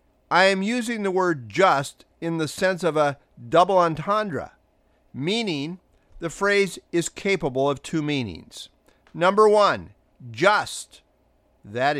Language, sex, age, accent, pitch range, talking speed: English, male, 50-69, American, 150-200 Hz, 125 wpm